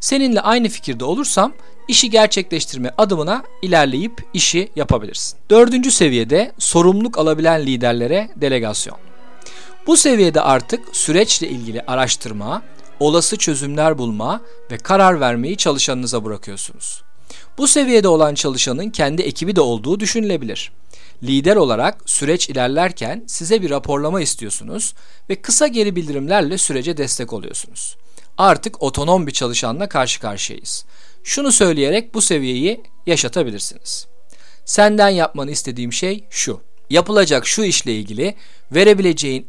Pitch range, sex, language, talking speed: 130-210 Hz, male, Turkish, 115 wpm